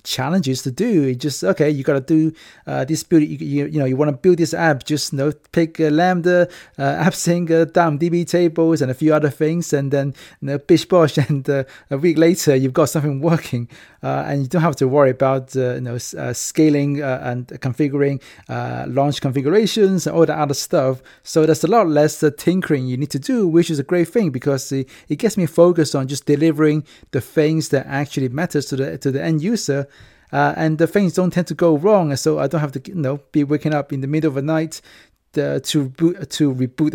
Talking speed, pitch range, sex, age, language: 235 wpm, 140-165 Hz, male, 30-49, English